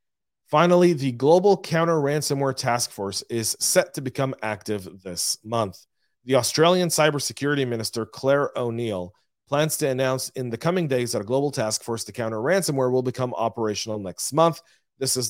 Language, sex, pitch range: English, male, 115-145 Hz